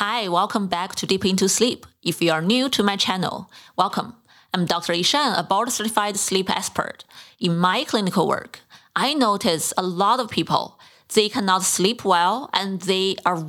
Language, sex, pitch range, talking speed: English, female, 180-230 Hz, 175 wpm